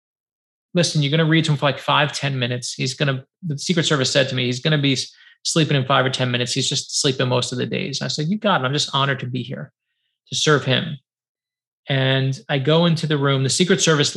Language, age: English, 30-49